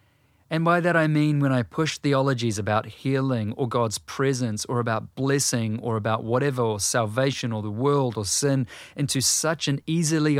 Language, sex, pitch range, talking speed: English, male, 115-145 Hz, 180 wpm